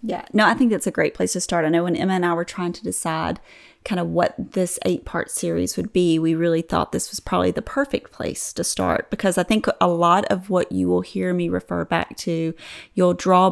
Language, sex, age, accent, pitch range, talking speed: English, female, 30-49, American, 165-190 Hz, 250 wpm